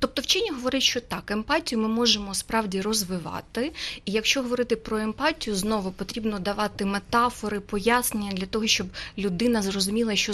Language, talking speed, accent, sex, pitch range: Ukrainian, 150 wpm, native, female, 205-245 Hz